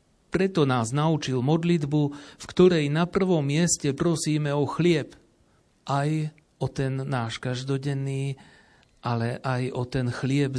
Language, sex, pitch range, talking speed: Slovak, male, 125-150 Hz, 125 wpm